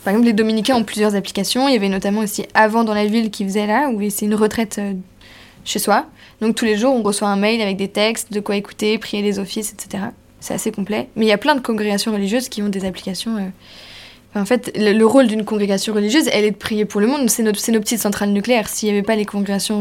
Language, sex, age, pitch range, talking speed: French, female, 20-39, 195-225 Hz, 270 wpm